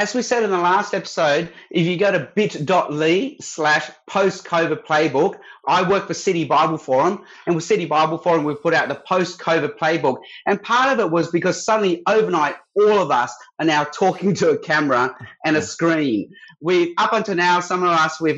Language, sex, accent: English, male, Australian